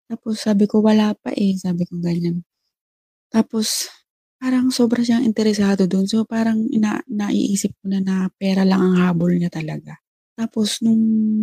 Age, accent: 20-39, native